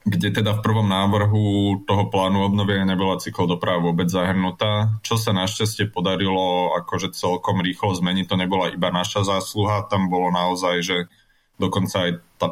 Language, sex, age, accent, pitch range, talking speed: Czech, male, 20-39, native, 85-100 Hz, 160 wpm